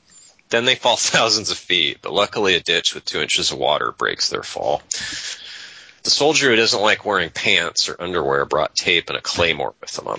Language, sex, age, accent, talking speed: English, male, 30-49, American, 205 wpm